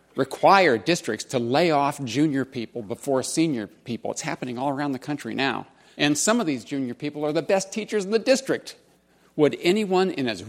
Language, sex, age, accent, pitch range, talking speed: English, male, 50-69, American, 120-165 Hz, 195 wpm